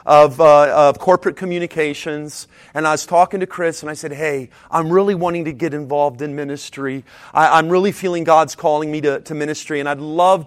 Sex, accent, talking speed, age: male, American, 205 wpm, 40-59